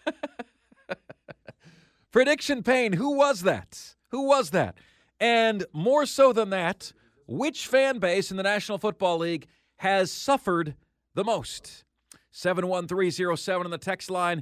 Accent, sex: American, male